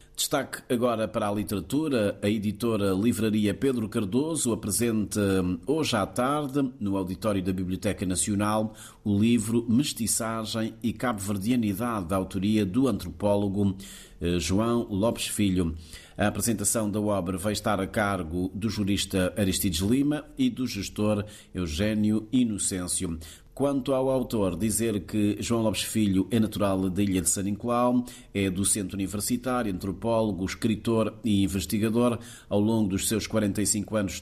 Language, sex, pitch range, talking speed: Portuguese, male, 95-115 Hz, 135 wpm